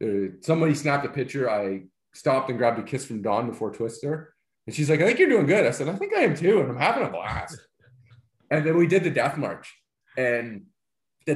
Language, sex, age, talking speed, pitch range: English, male, 20-39, 230 wpm, 110-150 Hz